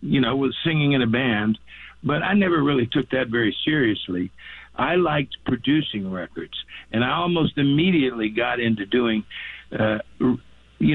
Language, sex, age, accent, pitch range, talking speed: English, male, 60-79, American, 110-145 Hz, 155 wpm